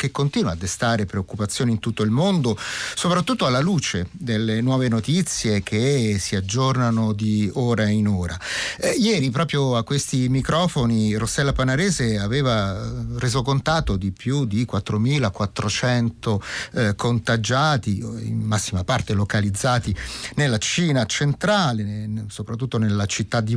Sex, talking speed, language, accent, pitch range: male, 130 wpm, Italian, native, 110-145 Hz